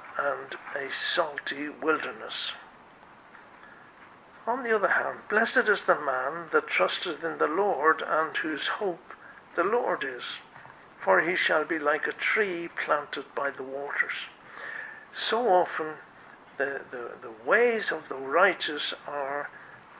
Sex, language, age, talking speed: male, English, 60-79, 130 wpm